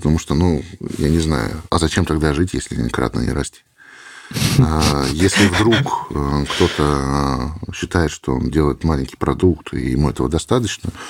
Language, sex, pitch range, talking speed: Russian, male, 70-85 Hz, 145 wpm